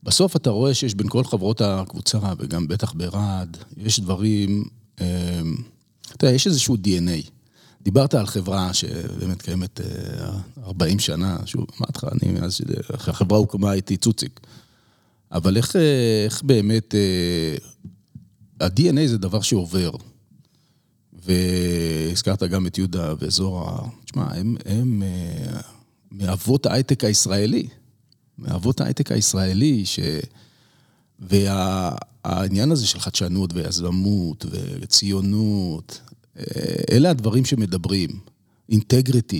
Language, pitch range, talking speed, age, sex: Hebrew, 95-120 Hz, 110 wpm, 40-59, male